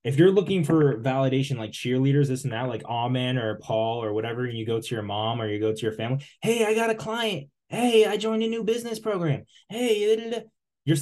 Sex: male